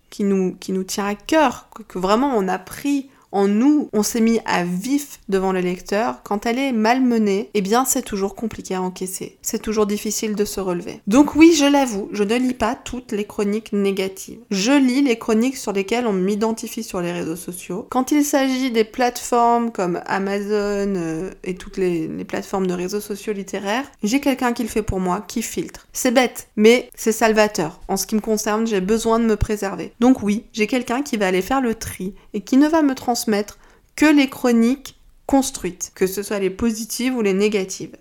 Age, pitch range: 20-39, 200-250 Hz